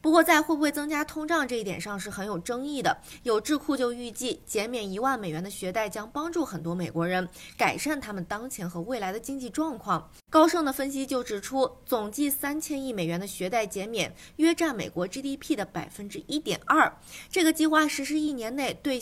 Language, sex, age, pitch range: Chinese, female, 20-39, 195-290 Hz